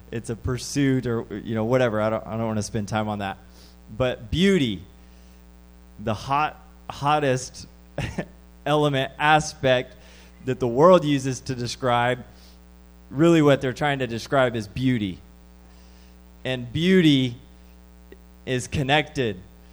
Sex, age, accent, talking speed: male, 20-39, American, 130 wpm